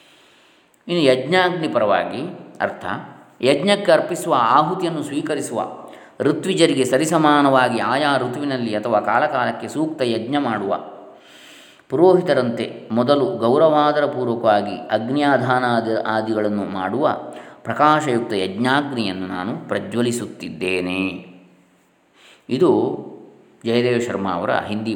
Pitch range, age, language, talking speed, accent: 100-135 Hz, 20-39, Kannada, 75 wpm, native